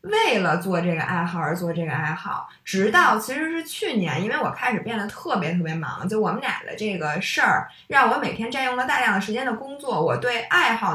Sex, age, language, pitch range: female, 20-39, Chinese, 175-260 Hz